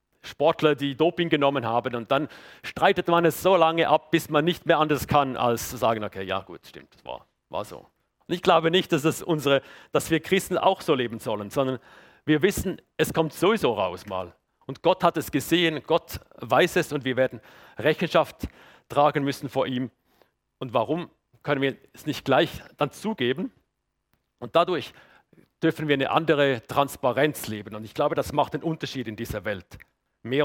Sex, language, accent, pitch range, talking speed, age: male, German, German, 125-160 Hz, 190 wpm, 40-59